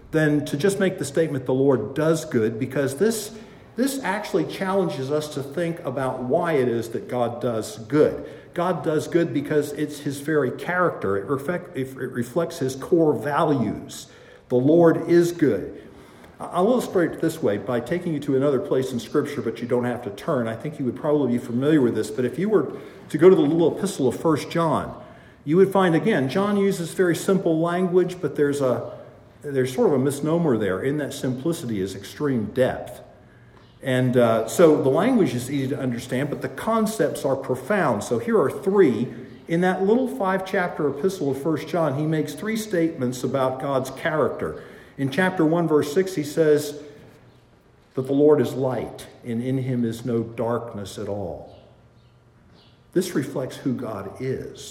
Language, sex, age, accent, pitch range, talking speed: English, male, 50-69, American, 125-165 Hz, 185 wpm